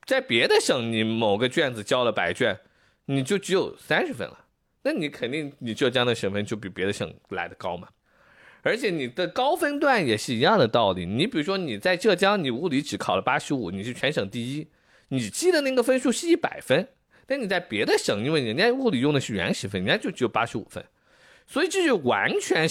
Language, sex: Chinese, male